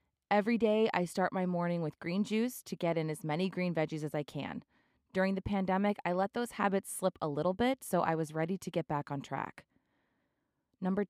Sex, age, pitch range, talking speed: female, 20-39, 165-205 Hz, 215 wpm